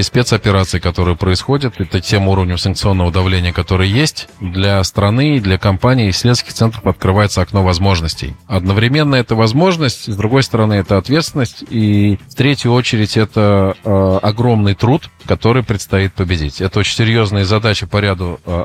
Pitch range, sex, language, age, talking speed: 95-115 Hz, male, Russian, 20-39, 150 wpm